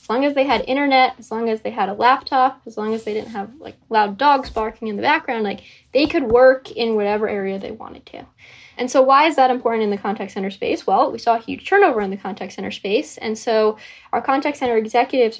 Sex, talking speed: female, 250 wpm